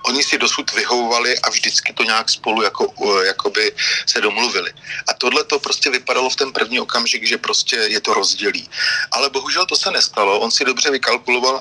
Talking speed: 190 wpm